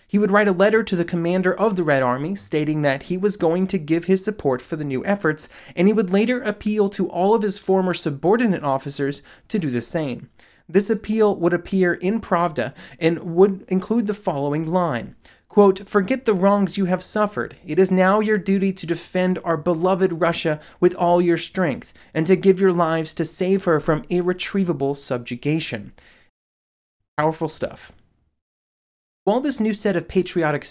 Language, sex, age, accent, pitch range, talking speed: English, male, 30-49, American, 155-200 Hz, 180 wpm